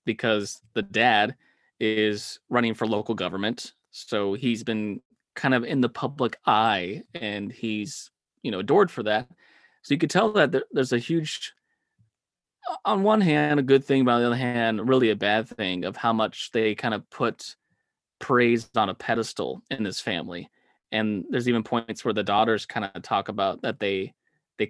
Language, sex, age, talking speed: English, male, 20-39, 180 wpm